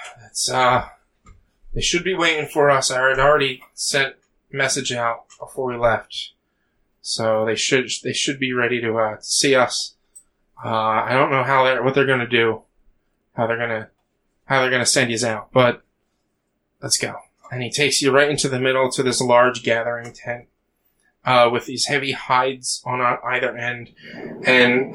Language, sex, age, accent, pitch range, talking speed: English, male, 20-39, American, 120-140 Hz, 170 wpm